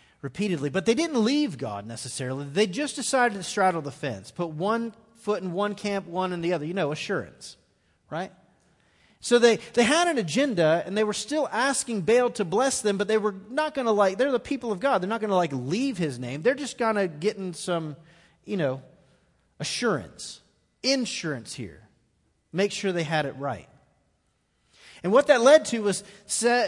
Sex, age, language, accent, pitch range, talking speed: male, 30-49, English, American, 145-215 Hz, 200 wpm